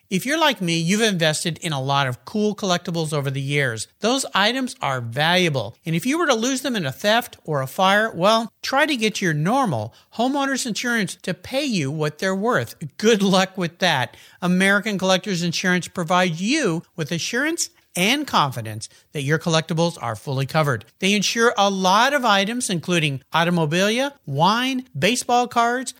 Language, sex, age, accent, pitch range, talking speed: English, male, 50-69, American, 160-240 Hz, 175 wpm